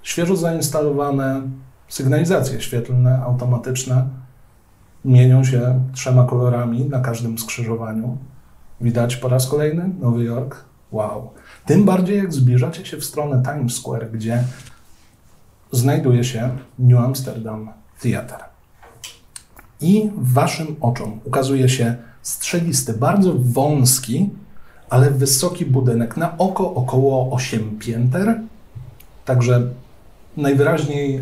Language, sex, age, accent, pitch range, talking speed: Polish, male, 40-59, native, 115-140 Hz, 100 wpm